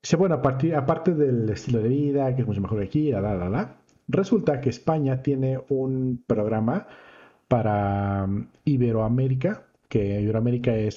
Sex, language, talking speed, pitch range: male, Spanish, 125 wpm, 115-145 Hz